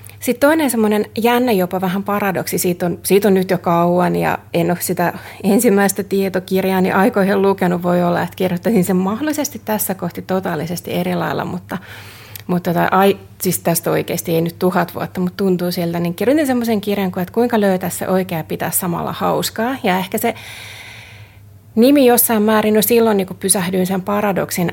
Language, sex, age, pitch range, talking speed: Finnish, female, 30-49, 175-220 Hz, 175 wpm